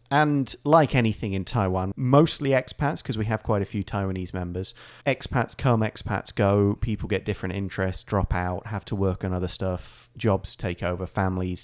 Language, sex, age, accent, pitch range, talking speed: English, male, 30-49, British, 100-120 Hz, 180 wpm